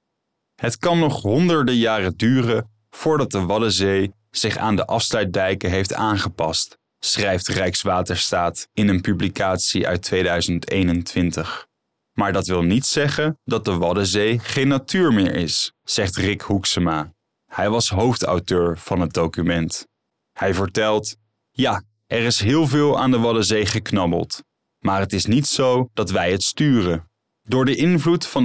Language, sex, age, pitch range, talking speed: Dutch, male, 20-39, 95-130 Hz, 140 wpm